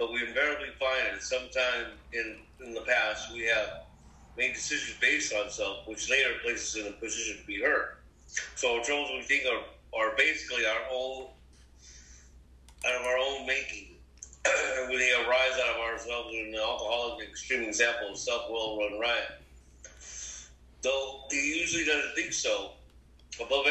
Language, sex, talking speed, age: English, male, 160 wpm, 50-69